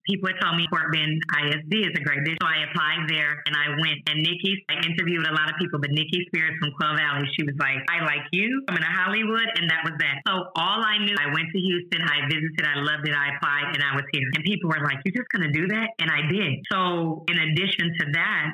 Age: 30-49